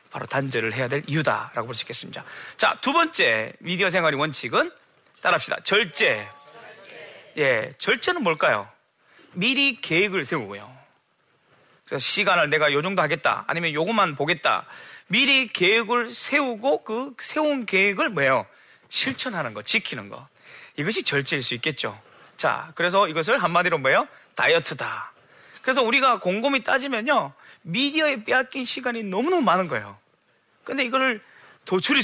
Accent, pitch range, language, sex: native, 170-265 Hz, Korean, male